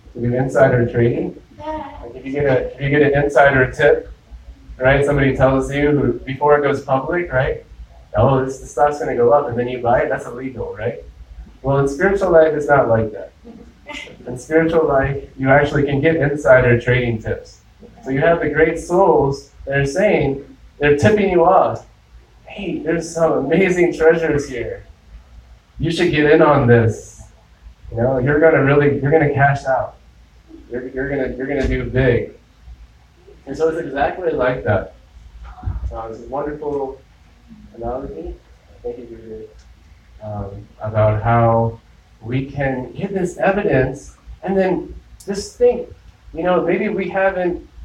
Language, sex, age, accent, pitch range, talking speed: English, male, 20-39, American, 120-155 Hz, 170 wpm